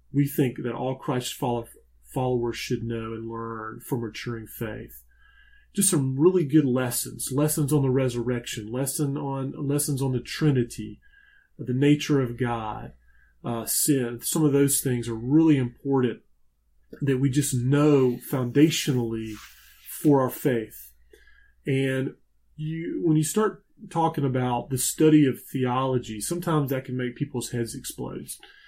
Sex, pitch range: male, 120-150 Hz